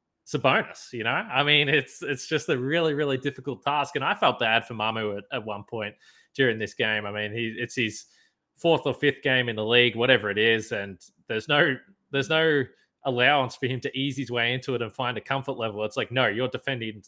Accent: Australian